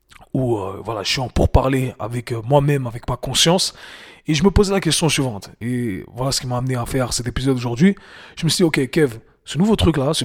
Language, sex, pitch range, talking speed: French, male, 125-150 Hz, 235 wpm